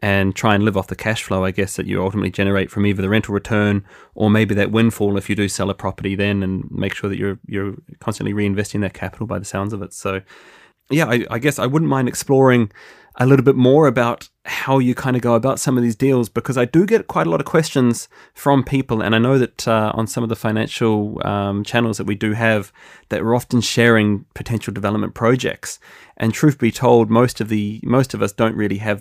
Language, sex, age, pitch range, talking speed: English, male, 20-39, 100-120 Hz, 240 wpm